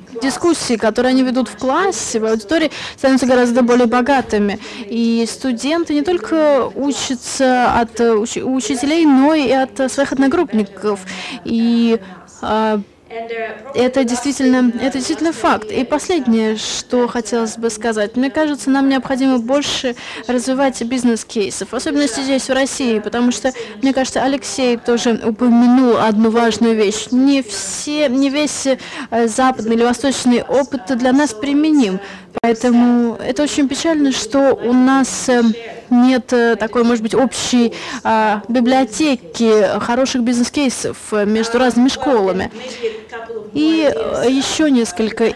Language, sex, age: Russian, female, 20-39